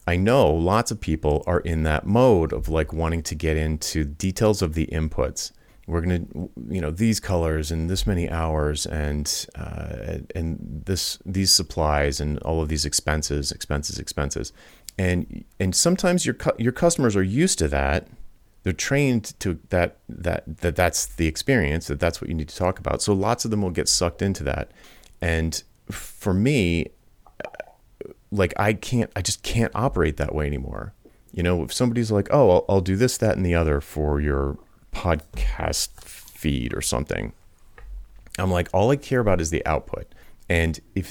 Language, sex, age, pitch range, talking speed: English, male, 30-49, 80-100 Hz, 180 wpm